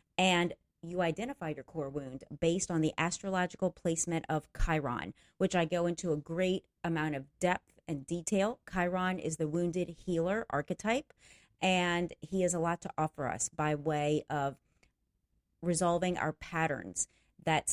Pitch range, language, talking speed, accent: 155-190 Hz, English, 150 wpm, American